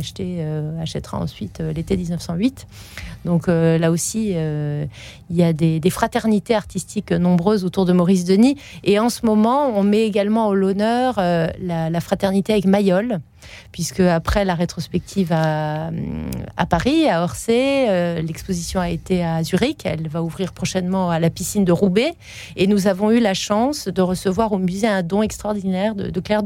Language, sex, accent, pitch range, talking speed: French, female, French, 165-200 Hz, 180 wpm